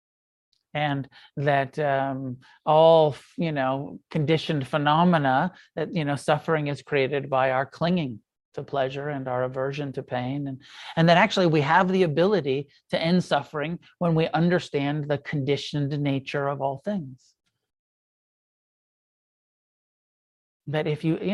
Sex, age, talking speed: male, 40-59, 135 wpm